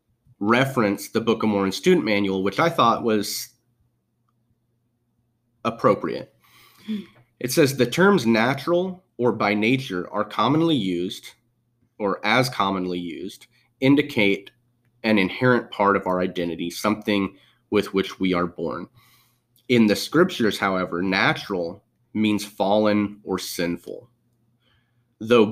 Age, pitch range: 30-49, 100-120 Hz